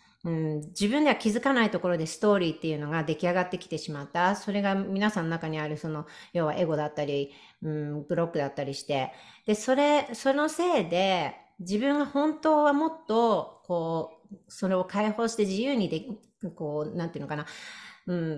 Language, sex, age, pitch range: Japanese, female, 40-59, 165-225 Hz